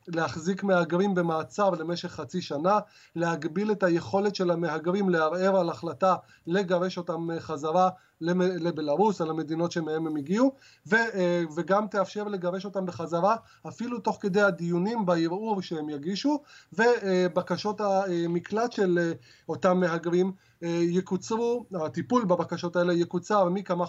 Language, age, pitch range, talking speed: Hebrew, 30-49, 170-200 Hz, 120 wpm